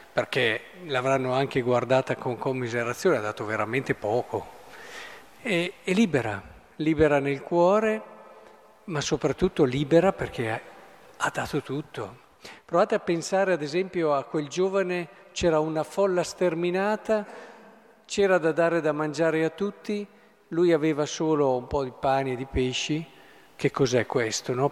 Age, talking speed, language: 50-69, 135 wpm, Italian